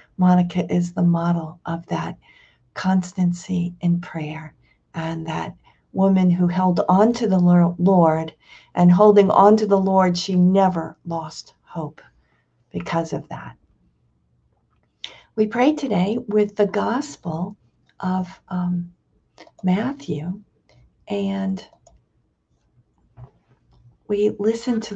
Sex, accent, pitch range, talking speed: female, American, 175-210 Hz, 105 wpm